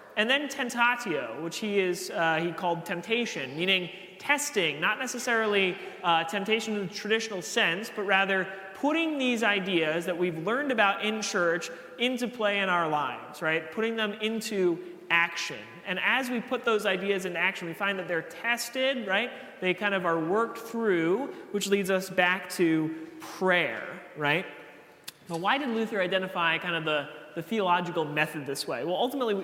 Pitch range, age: 165-225 Hz, 30-49